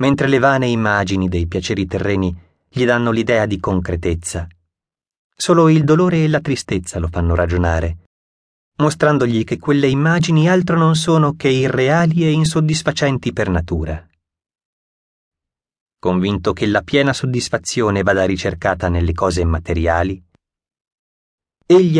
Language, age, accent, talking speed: Italian, 30-49, native, 125 wpm